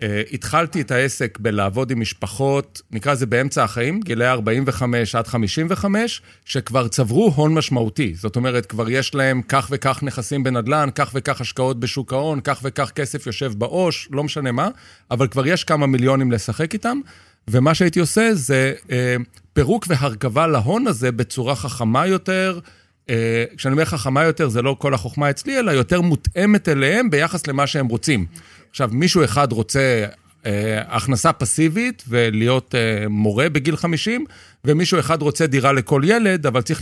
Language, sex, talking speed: Hebrew, male, 160 wpm